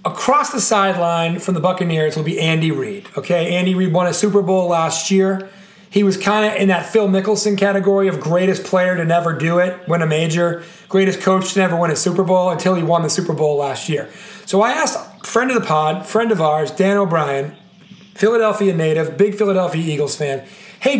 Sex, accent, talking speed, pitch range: male, American, 210 wpm, 170-210 Hz